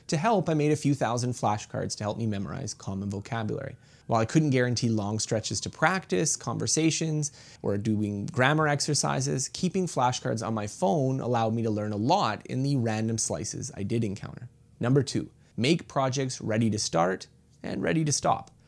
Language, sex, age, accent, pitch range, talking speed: English, male, 30-49, American, 110-150 Hz, 180 wpm